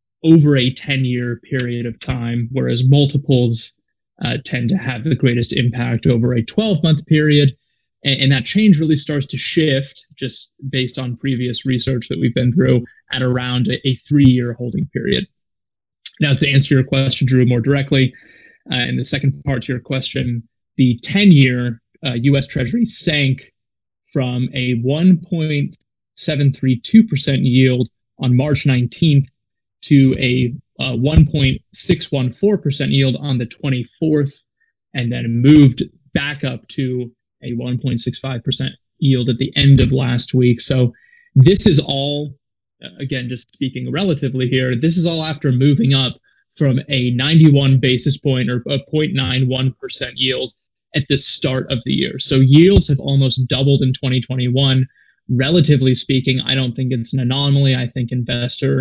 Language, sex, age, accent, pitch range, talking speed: English, male, 20-39, American, 125-140 Hz, 145 wpm